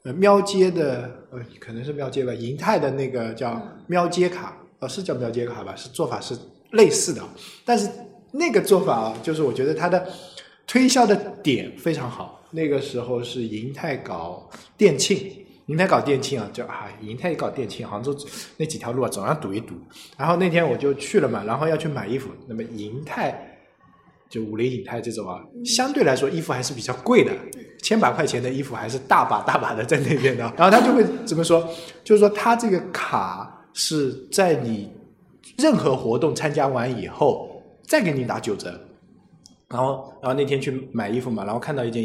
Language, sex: Chinese, male